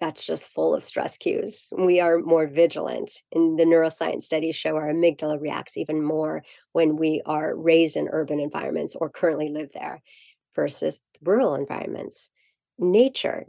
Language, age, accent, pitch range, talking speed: English, 40-59, American, 155-180 Hz, 155 wpm